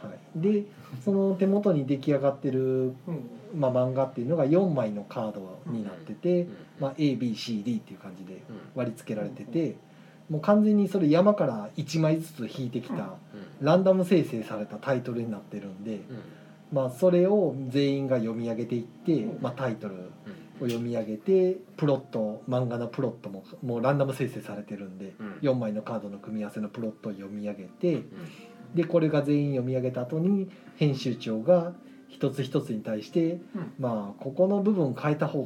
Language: Japanese